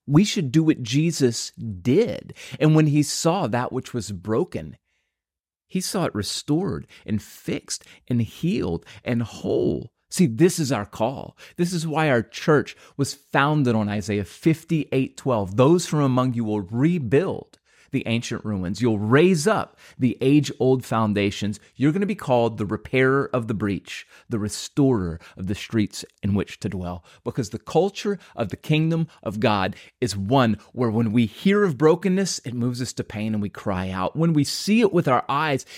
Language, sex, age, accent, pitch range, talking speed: English, male, 30-49, American, 105-150 Hz, 180 wpm